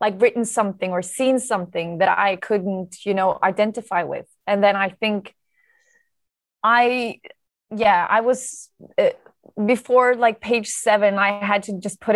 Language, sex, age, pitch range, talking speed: English, female, 20-39, 190-220 Hz, 150 wpm